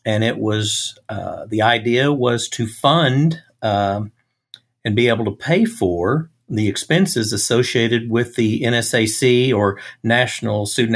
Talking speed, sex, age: 135 wpm, male, 50-69